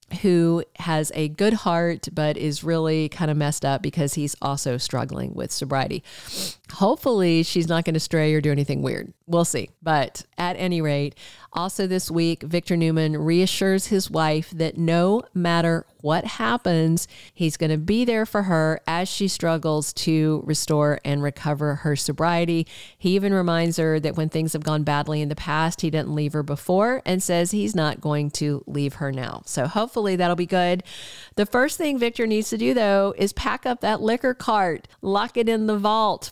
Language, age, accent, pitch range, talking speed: English, 50-69, American, 155-195 Hz, 190 wpm